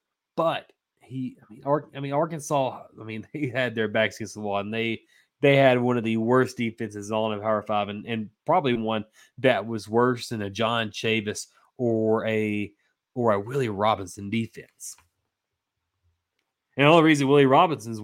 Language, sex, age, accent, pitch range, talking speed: English, male, 20-39, American, 115-145 Hz, 170 wpm